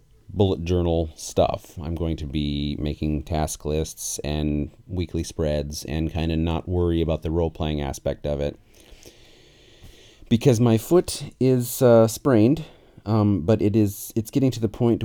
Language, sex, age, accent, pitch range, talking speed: English, male, 30-49, American, 80-105 Hz, 160 wpm